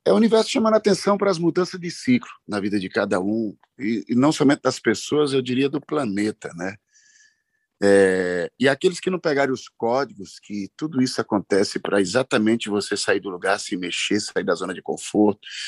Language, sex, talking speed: Portuguese, male, 195 wpm